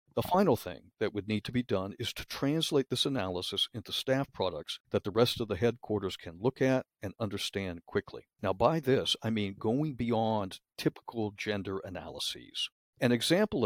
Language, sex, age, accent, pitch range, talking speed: English, male, 50-69, American, 100-125 Hz, 180 wpm